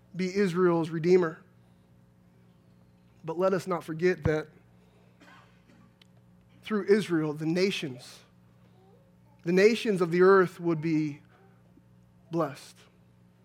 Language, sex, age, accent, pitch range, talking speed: English, male, 30-49, American, 140-200 Hz, 95 wpm